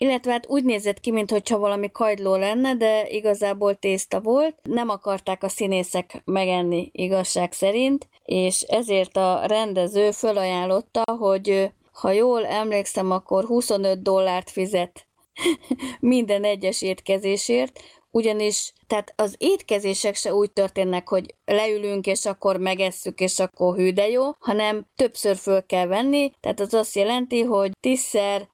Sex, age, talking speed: female, 20-39, 130 wpm